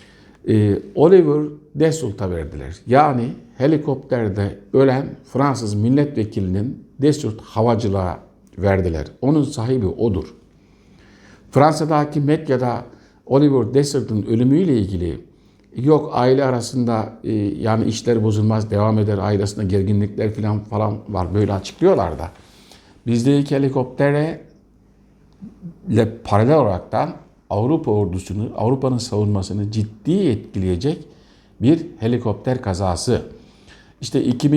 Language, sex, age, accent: Turkish, male, 60-79, native